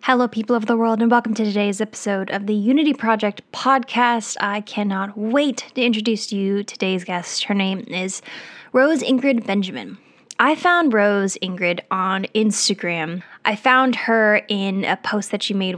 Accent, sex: American, female